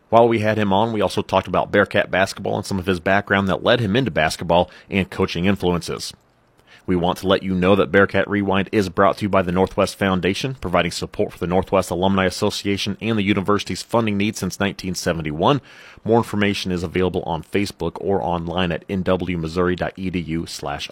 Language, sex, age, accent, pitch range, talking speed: English, male, 30-49, American, 95-110 Hz, 190 wpm